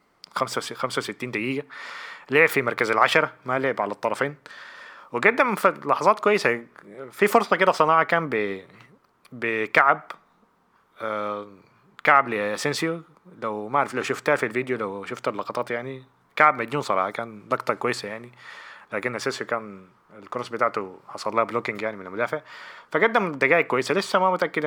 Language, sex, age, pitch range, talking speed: Arabic, male, 20-39, 110-150 Hz, 140 wpm